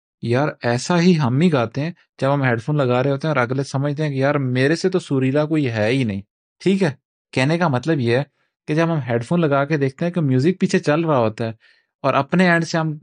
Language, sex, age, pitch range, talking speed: Urdu, male, 30-49, 120-155 Hz, 265 wpm